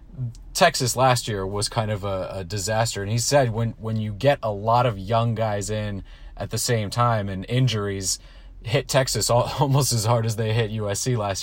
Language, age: English, 30-49